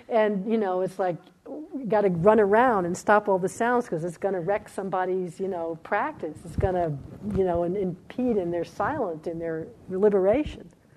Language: English